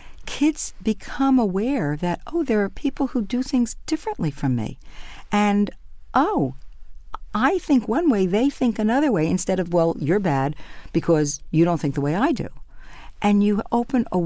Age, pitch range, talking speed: 50-69, 155-205 Hz, 175 wpm